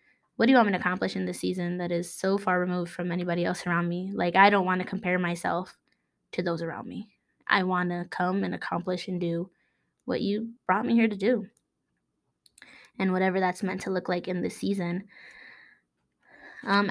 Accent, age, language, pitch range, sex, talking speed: American, 20-39, English, 180-215 Hz, female, 200 wpm